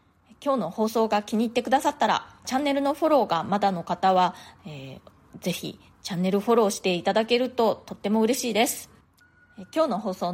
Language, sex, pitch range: Japanese, female, 195-250 Hz